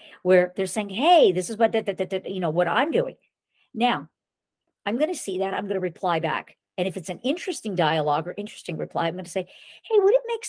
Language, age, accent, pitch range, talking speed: English, 50-69, American, 175-255 Hz, 235 wpm